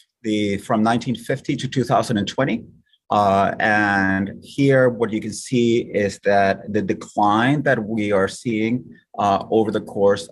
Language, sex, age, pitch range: English, male, 30-49, 100-130 Hz